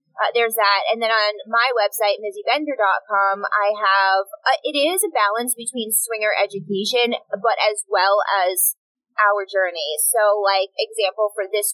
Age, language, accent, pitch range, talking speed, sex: 20-39, English, American, 195-240 Hz, 155 wpm, female